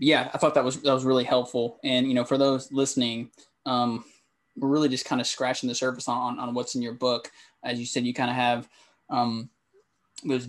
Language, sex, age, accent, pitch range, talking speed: English, male, 20-39, American, 120-130 Hz, 215 wpm